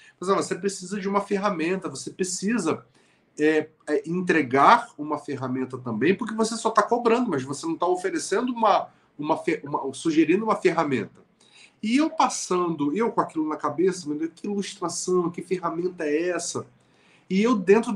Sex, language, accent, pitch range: male, Portuguese, Brazilian, 155-225 Hz